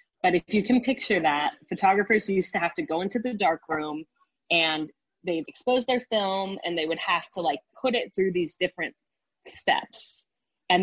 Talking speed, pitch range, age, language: 195 wpm, 165-215 Hz, 30-49, English